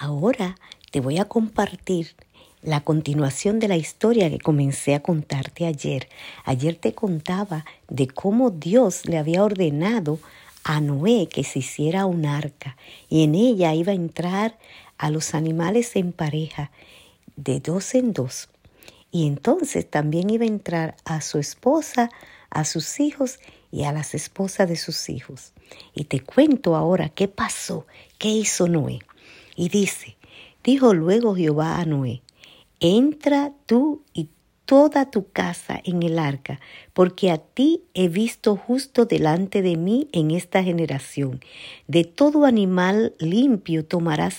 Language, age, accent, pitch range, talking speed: Spanish, 50-69, American, 155-220 Hz, 145 wpm